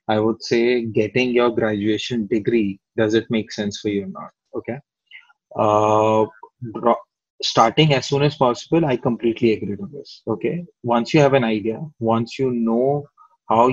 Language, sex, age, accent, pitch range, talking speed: English, male, 20-39, Indian, 115-130 Hz, 160 wpm